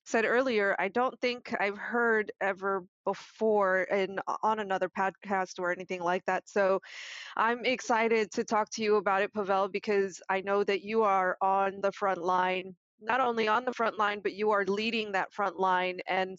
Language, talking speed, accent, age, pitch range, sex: English, 185 wpm, American, 20-39, 185-220 Hz, female